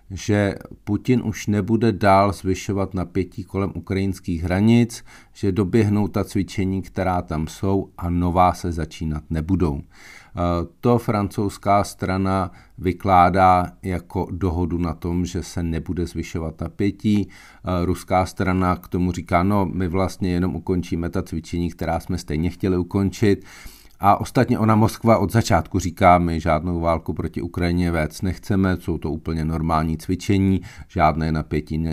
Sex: male